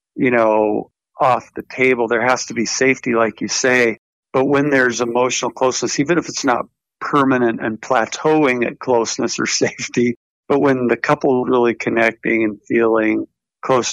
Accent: American